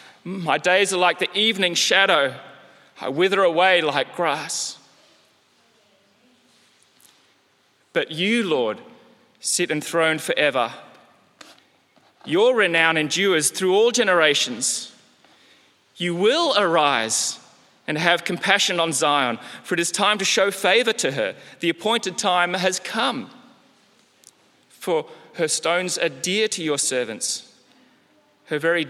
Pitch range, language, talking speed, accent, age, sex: 160-225 Hz, English, 115 wpm, Australian, 30-49, male